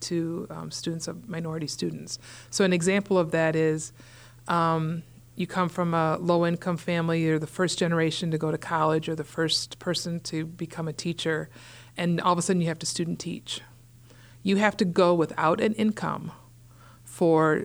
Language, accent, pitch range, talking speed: English, American, 155-180 Hz, 175 wpm